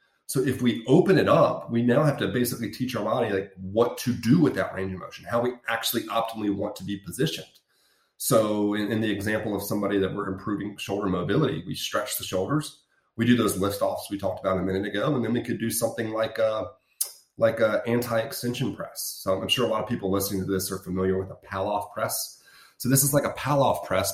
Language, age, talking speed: English, 30-49, 230 wpm